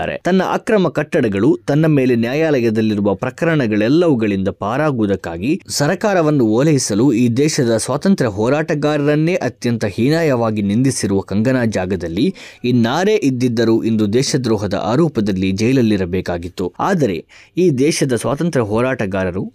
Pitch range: 105-150 Hz